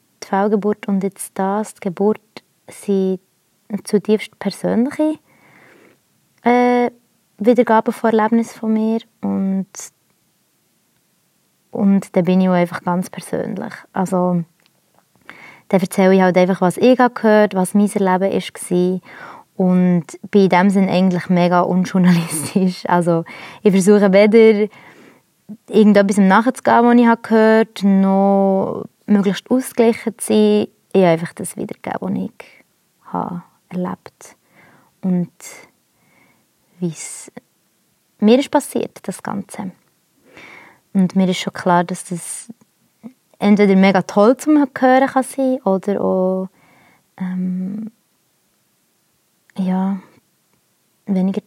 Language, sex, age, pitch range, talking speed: German, female, 20-39, 185-220 Hz, 120 wpm